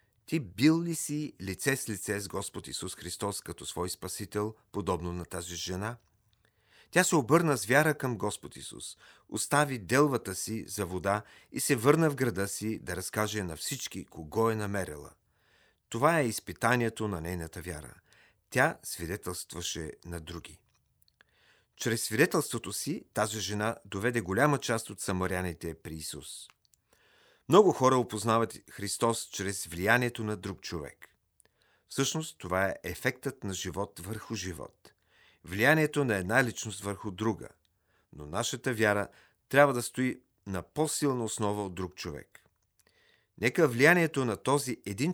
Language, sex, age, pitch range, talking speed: Bulgarian, male, 40-59, 95-125 Hz, 140 wpm